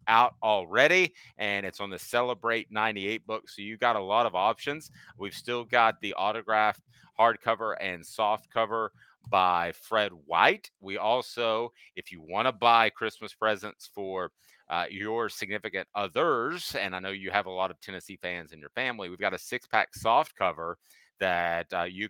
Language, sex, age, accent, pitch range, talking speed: English, male, 30-49, American, 90-115 Hz, 170 wpm